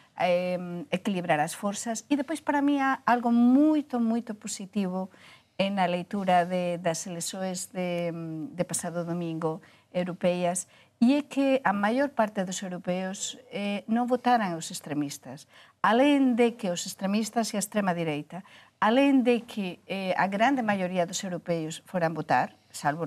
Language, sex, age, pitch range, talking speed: Portuguese, female, 50-69, 170-220 Hz, 145 wpm